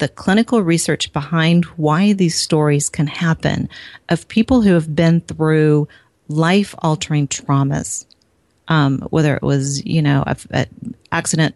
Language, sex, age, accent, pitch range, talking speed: English, female, 40-59, American, 140-170 Hz, 135 wpm